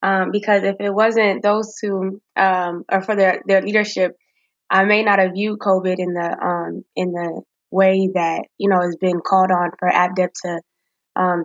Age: 10-29